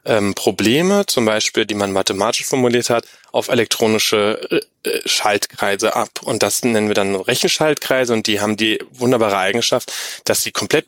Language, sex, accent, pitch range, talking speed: German, male, German, 100-115 Hz, 160 wpm